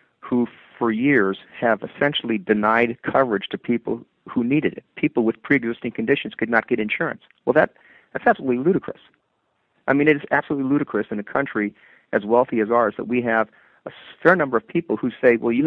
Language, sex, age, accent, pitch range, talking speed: English, male, 40-59, American, 110-130 Hz, 190 wpm